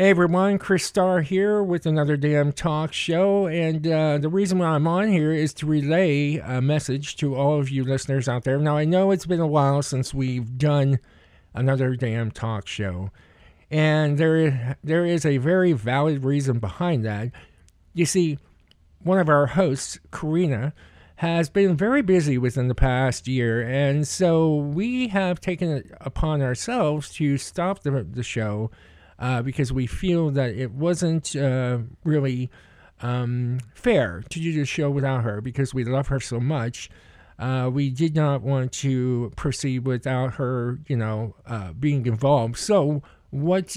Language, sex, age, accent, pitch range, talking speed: English, male, 50-69, American, 125-170 Hz, 165 wpm